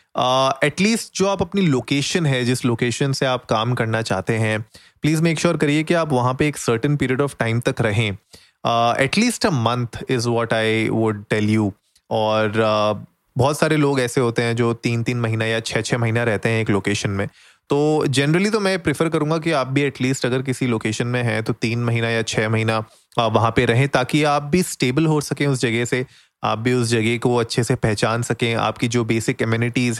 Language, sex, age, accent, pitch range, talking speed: Hindi, male, 30-49, native, 115-140 Hz, 215 wpm